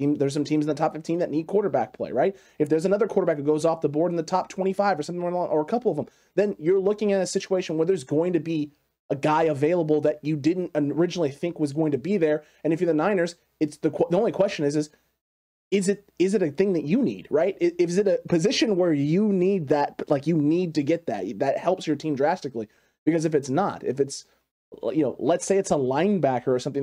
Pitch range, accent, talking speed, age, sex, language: 150-190 Hz, American, 255 wpm, 30-49, male, English